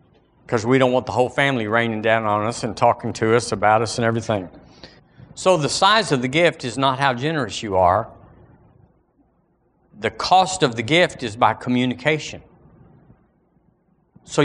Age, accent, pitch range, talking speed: 50-69, American, 110-155 Hz, 165 wpm